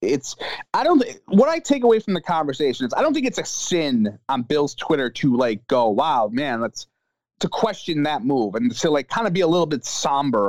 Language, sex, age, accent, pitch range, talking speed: English, male, 30-49, American, 135-210 Hz, 235 wpm